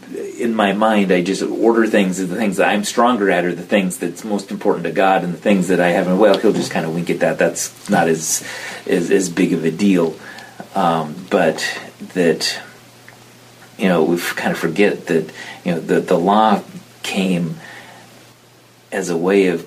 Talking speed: 200 wpm